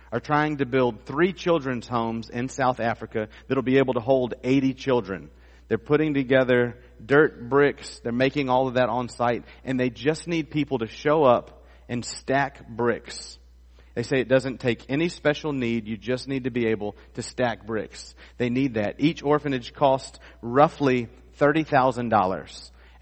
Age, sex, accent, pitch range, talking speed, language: 40-59, male, American, 100-130 Hz, 170 wpm, English